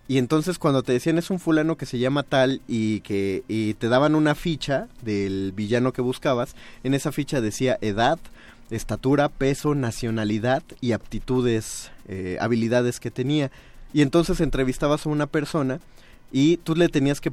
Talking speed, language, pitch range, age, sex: 165 wpm, Spanish, 120-150 Hz, 30-49, male